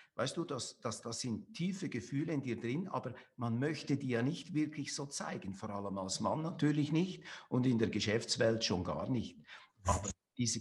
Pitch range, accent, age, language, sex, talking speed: 110-150 Hz, Austrian, 50-69, German, male, 200 wpm